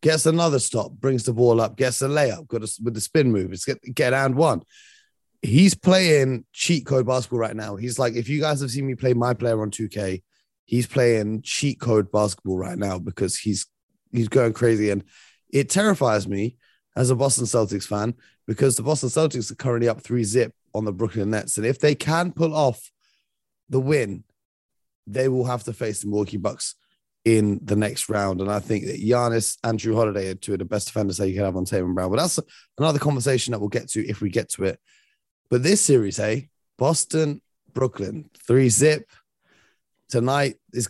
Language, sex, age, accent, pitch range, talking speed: English, male, 30-49, British, 105-135 Hz, 200 wpm